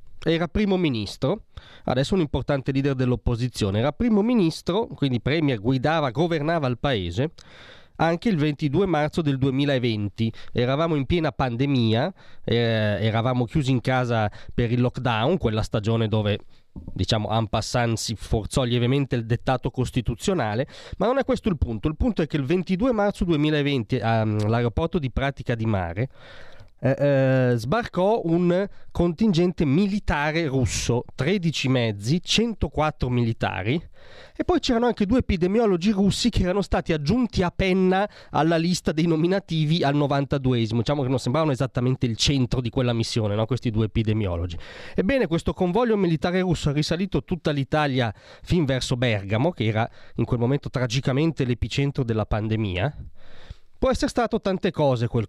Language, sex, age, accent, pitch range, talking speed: Italian, male, 30-49, native, 120-175 Hz, 145 wpm